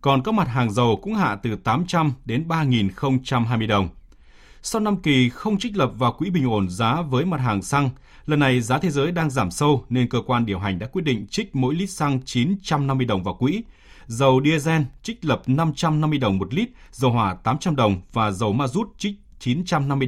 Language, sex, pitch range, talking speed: Vietnamese, male, 110-150 Hz, 205 wpm